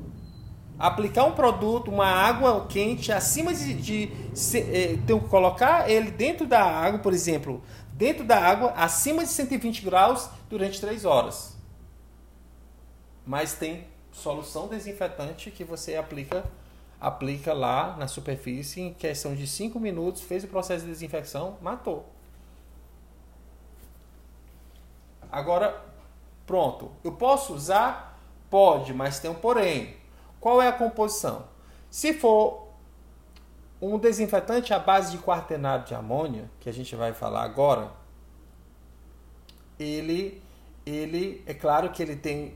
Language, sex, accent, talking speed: Portuguese, male, Brazilian, 125 wpm